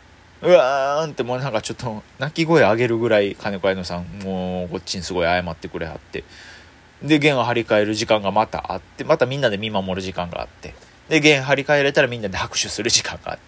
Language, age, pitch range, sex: Japanese, 20-39, 95-140 Hz, male